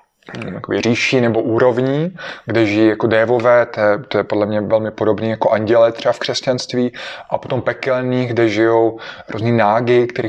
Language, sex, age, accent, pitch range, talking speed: Czech, male, 20-39, native, 115-140 Hz, 150 wpm